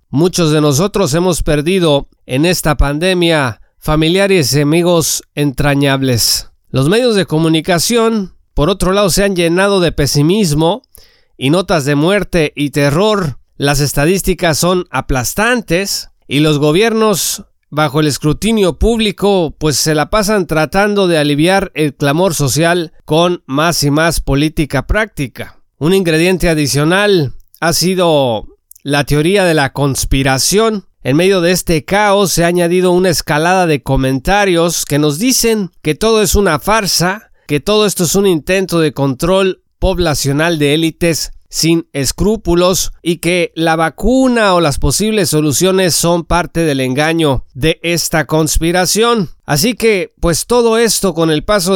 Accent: Mexican